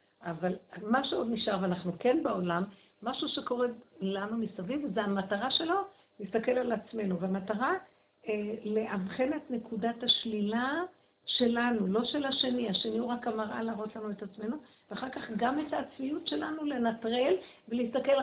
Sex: female